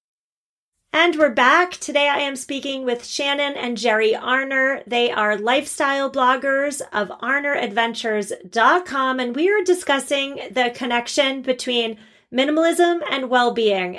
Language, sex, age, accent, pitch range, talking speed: English, female, 30-49, American, 215-275 Hz, 120 wpm